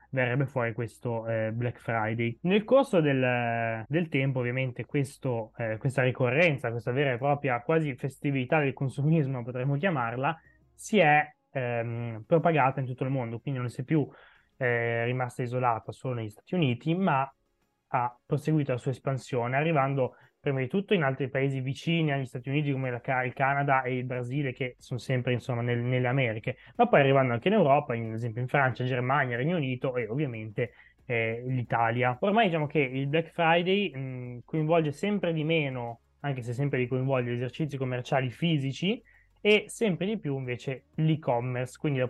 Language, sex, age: Italian, male, 20-39